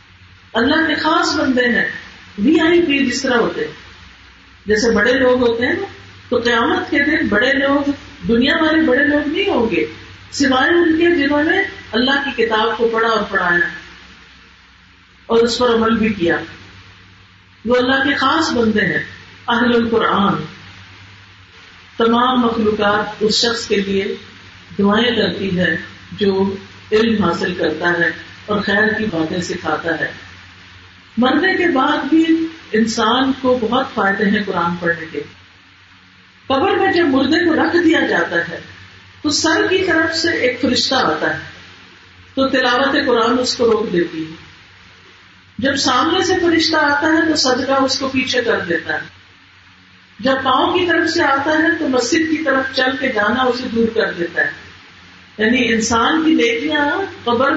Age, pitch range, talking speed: 50-69, 170-285 Hz, 155 wpm